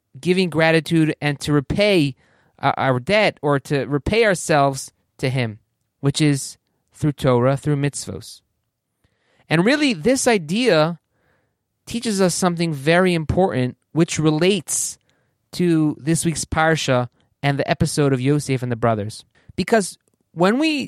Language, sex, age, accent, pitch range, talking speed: English, male, 30-49, American, 125-170 Hz, 130 wpm